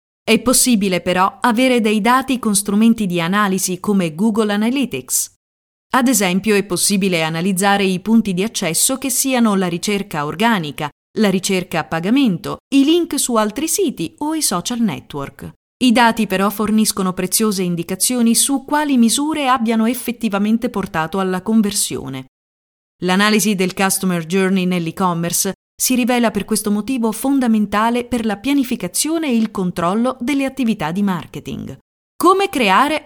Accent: native